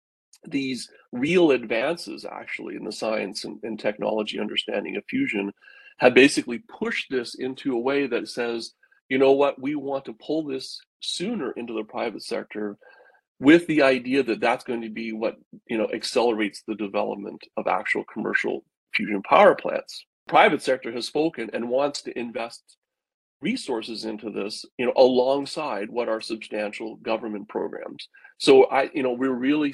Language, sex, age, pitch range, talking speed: English, male, 40-59, 110-145 Hz, 160 wpm